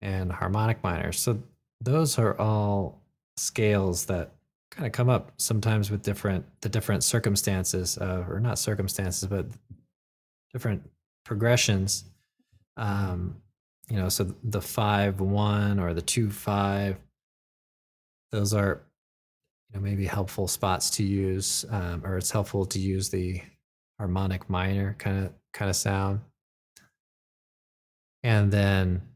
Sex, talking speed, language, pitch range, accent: male, 130 wpm, English, 90-105 Hz, American